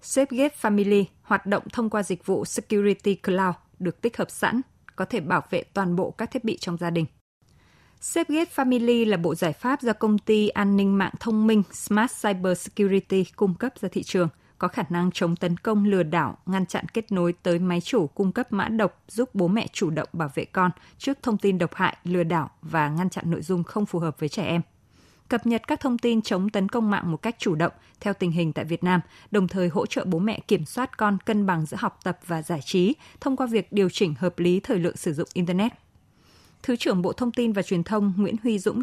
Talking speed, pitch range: 235 wpm, 175-220 Hz